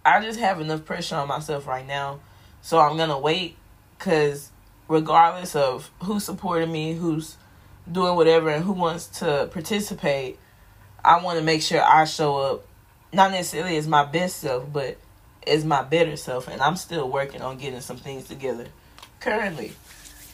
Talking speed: 170 wpm